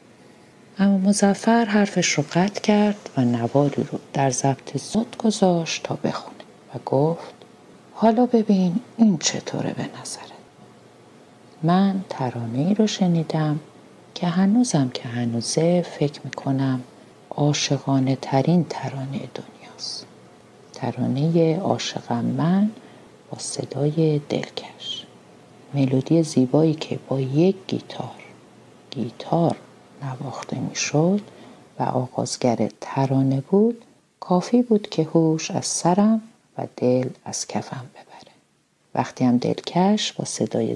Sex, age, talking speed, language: female, 50-69, 105 wpm, Persian